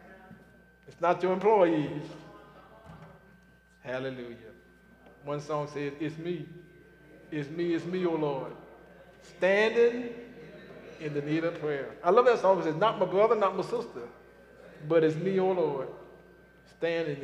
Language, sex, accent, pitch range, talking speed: English, male, American, 150-185 Hz, 140 wpm